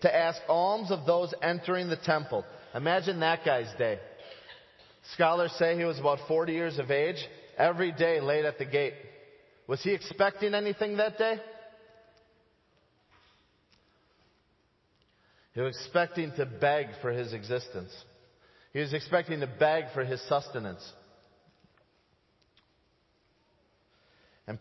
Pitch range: 115-170 Hz